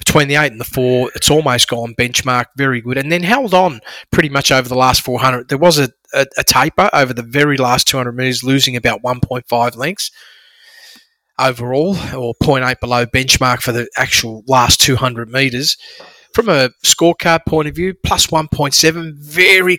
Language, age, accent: English, 30-49, Australian